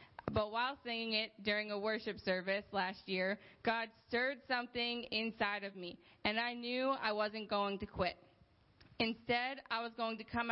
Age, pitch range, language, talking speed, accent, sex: 20-39, 210-240 Hz, English, 170 wpm, American, female